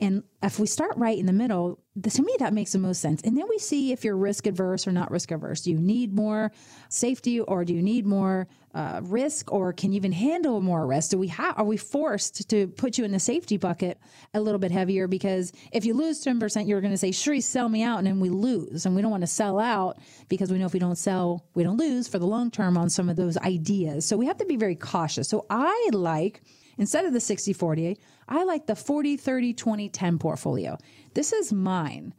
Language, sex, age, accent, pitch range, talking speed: English, female, 30-49, American, 180-235 Hz, 235 wpm